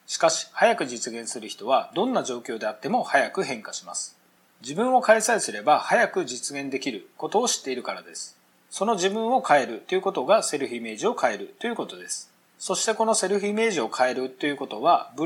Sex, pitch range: male, 140-220 Hz